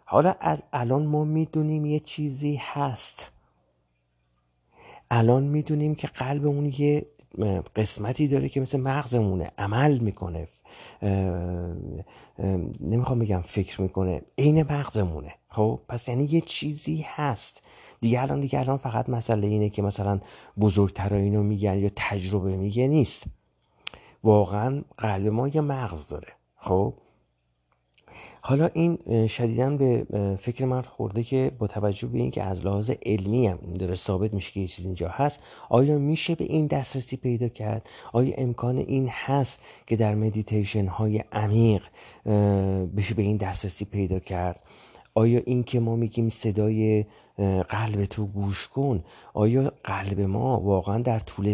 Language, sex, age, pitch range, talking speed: Persian, male, 50-69, 100-130 Hz, 140 wpm